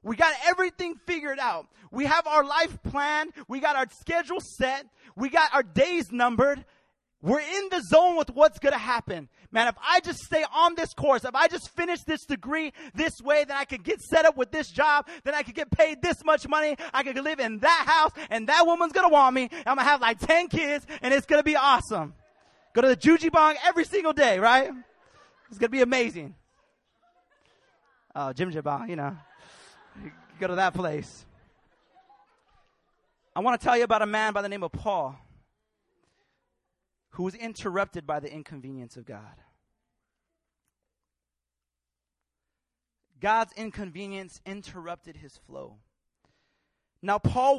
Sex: male